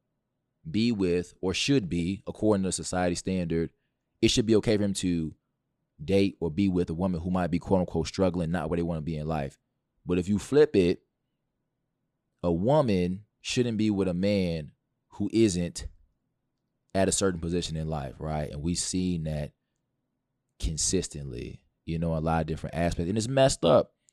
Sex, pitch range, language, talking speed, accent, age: male, 80-105 Hz, English, 180 wpm, American, 20-39